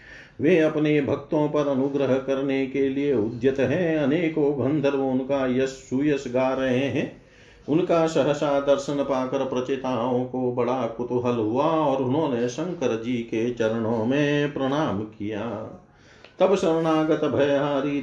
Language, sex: Hindi, male